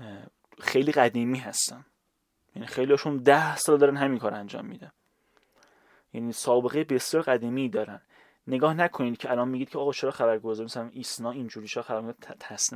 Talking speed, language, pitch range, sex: 150 wpm, Persian, 115-140 Hz, male